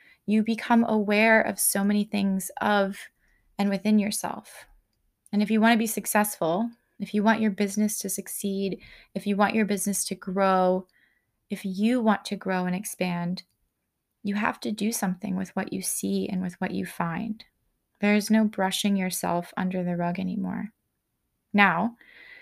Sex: female